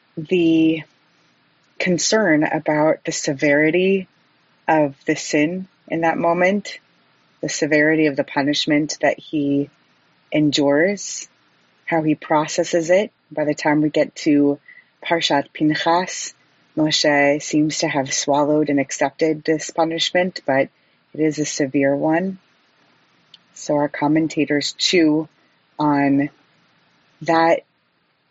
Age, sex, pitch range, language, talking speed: 30-49, female, 145-165 Hz, English, 110 wpm